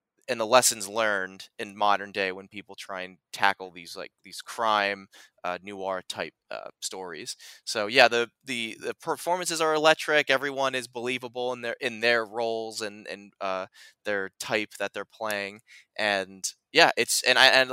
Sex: male